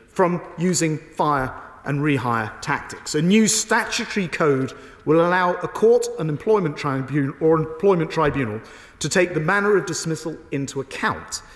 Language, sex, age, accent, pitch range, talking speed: English, male, 40-59, British, 145-205 Hz, 145 wpm